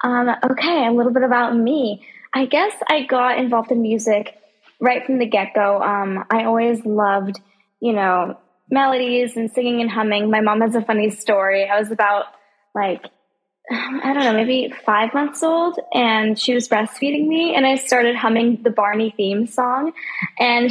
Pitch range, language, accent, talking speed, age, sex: 210-255 Hz, English, American, 170 wpm, 10-29, female